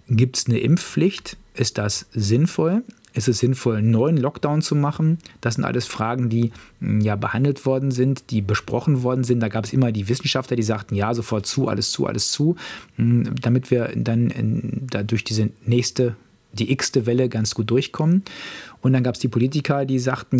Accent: German